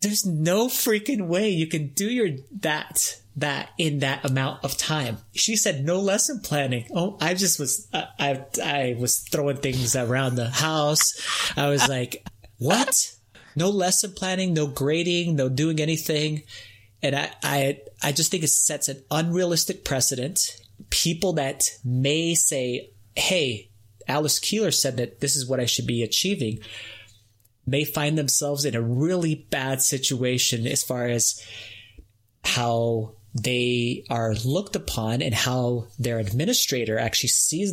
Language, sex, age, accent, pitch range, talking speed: English, male, 30-49, American, 120-160 Hz, 150 wpm